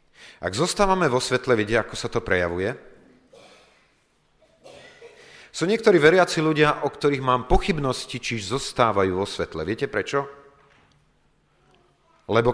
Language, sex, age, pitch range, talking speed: Slovak, male, 40-59, 105-150 Hz, 115 wpm